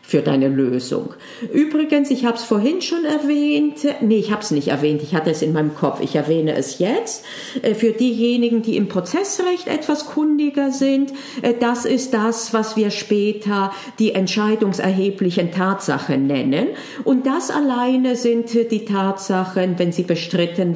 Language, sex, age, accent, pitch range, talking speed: German, female, 40-59, German, 185-265 Hz, 155 wpm